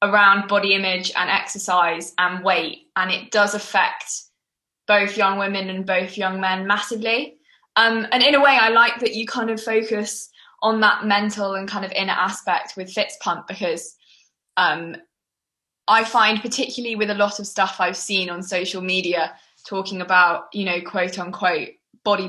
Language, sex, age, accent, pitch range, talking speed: English, female, 20-39, British, 185-215 Hz, 170 wpm